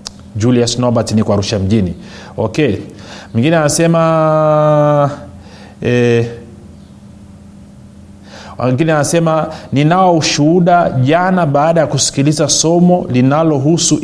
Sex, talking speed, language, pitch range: male, 75 wpm, Swahili, 115-160 Hz